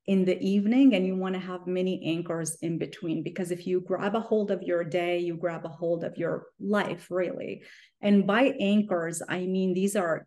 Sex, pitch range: female, 175-215 Hz